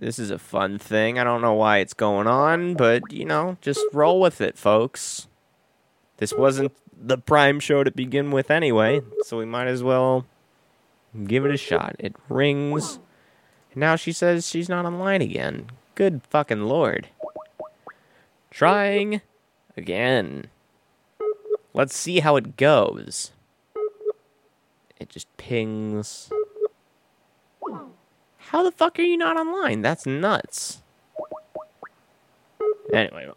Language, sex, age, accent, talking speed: English, male, 30-49, American, 130 wpm